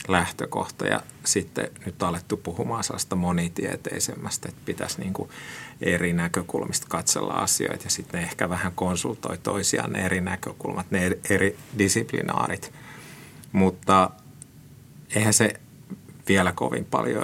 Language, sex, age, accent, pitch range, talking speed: Finnish, male, 30-49, native, 95-110 Hz, 120 wpm